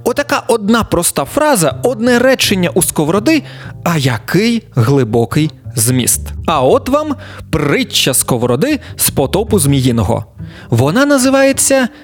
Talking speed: 110 wpm